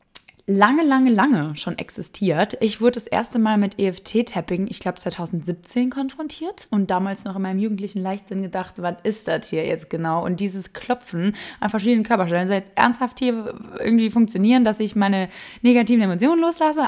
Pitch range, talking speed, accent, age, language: 180-240 Hz, 170 wpm, German, 20-39, German